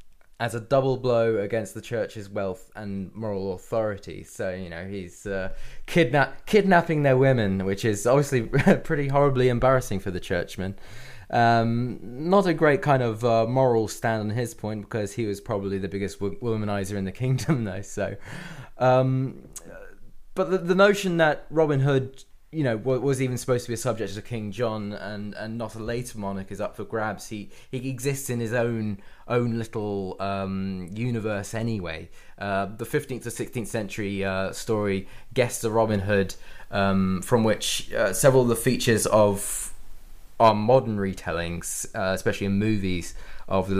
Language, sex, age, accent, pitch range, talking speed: English, male, 20-39, British, 100-125 Hz, 175 wpm